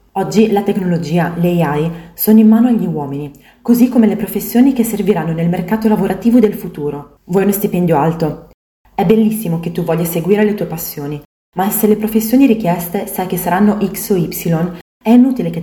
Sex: female